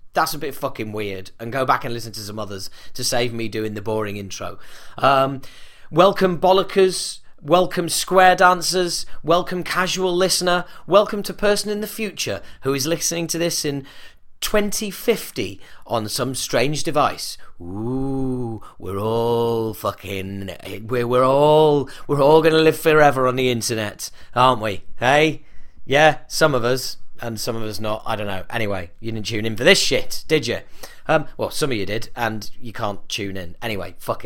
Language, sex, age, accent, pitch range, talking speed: English, male, 30-49, British, 120-170 Hz, 175 wpm